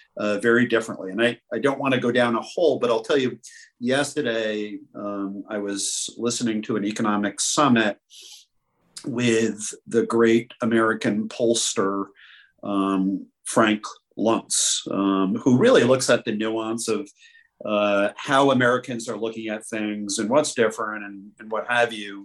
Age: 50-69